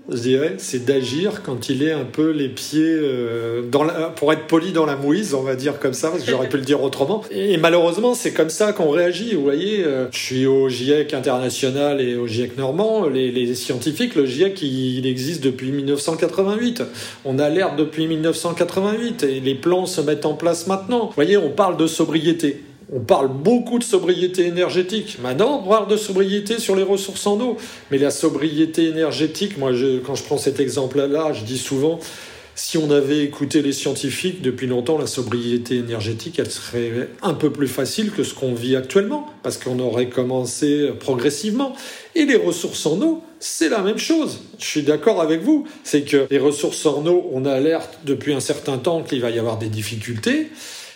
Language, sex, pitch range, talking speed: French, male, 135-180 Hz, 195 wpm